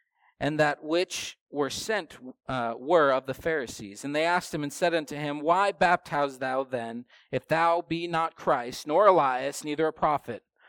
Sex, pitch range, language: male, 130-170 Hz, English